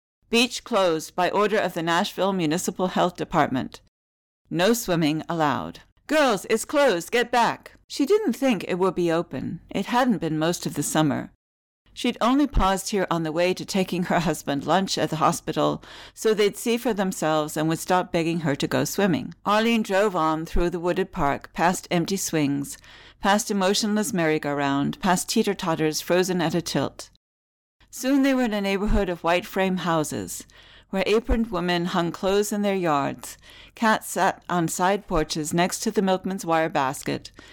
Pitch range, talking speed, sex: 155-200 Hz, 180 wpm, female